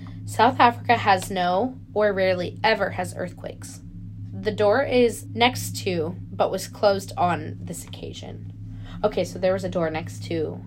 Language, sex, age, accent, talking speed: English, female, 20-39, American, 155 wpm